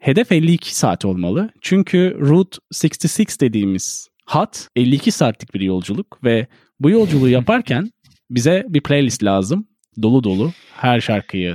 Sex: male